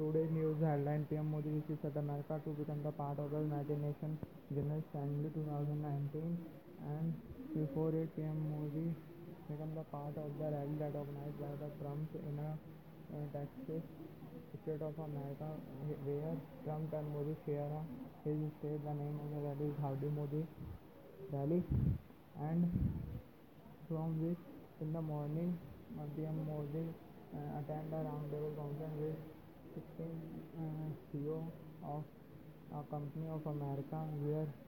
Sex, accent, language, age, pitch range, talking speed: male, Indian, English, 20-39, 150-160 Hz, 140 wpm